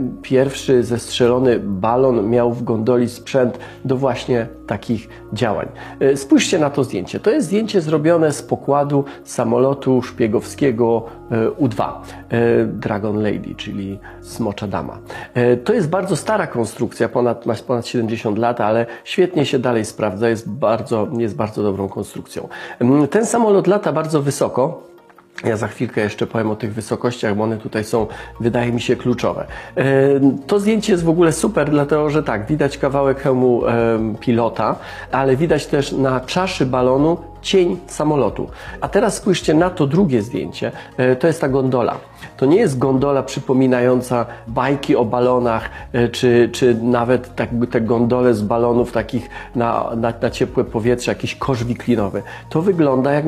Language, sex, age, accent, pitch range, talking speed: Polish, male, 40-59, native, 115-145 Hz, 145 wpm